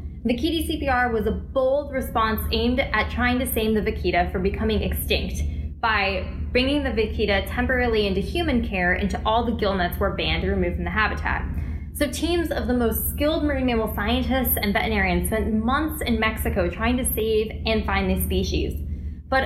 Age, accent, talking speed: 10-29, American, 185 wpm